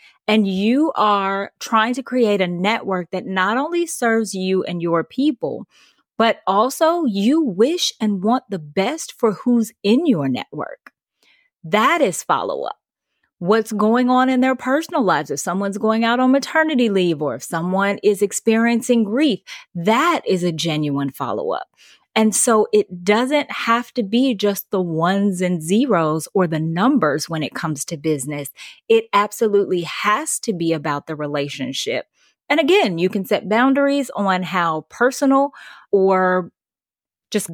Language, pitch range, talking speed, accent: English, 175-245 Hz, 155 wpm, American